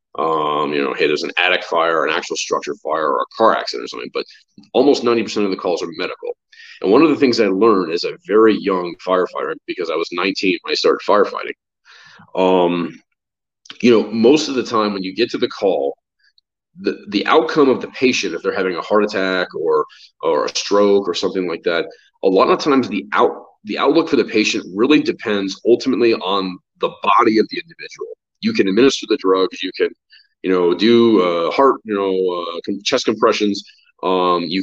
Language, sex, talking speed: English, male, 205 wpm